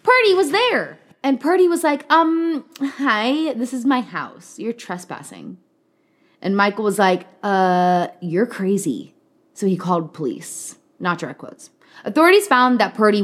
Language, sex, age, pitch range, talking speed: English, female, 20-39, 180-270 Hz, 150 wpm